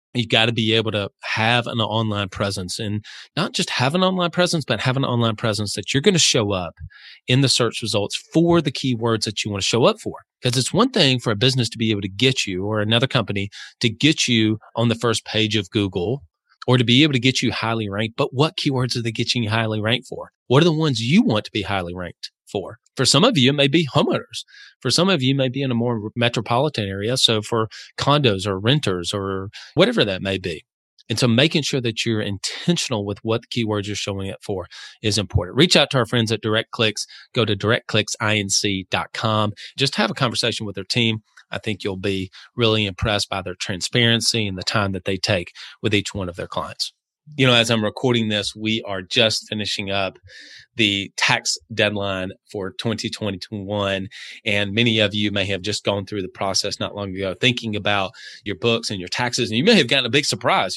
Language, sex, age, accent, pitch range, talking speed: English, male, 30-49, American, 105-125 Hz, 225 wpm